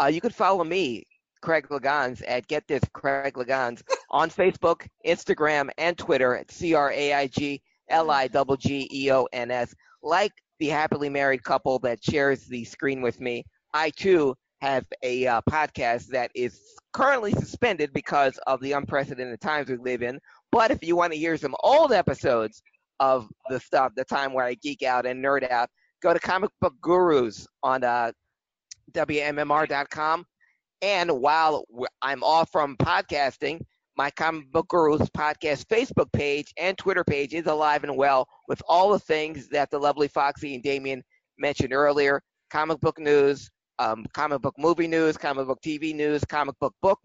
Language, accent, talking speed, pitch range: English, American, 170 wpm, 130-155 Hz